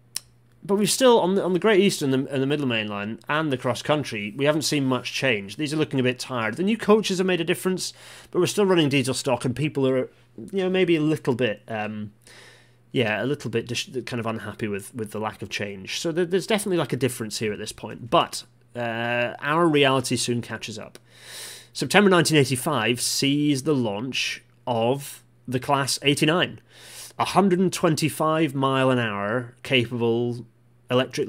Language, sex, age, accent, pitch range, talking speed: English, male, 30-49, British, 120-150 Hz, 190 wpm